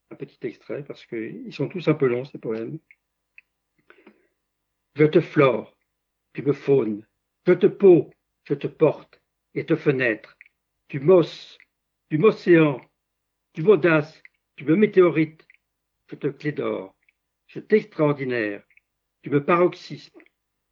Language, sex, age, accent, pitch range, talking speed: French, male, 60-79, French, 140-180 Hz, 135 wpm